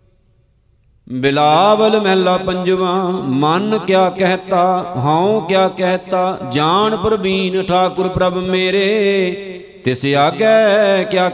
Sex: male